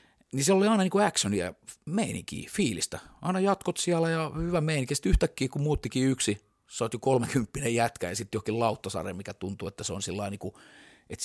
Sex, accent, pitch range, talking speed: male, native, 105-125 Hz, 190 wpm